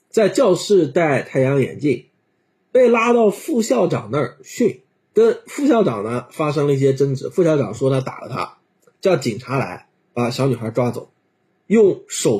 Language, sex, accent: Chinese, male, native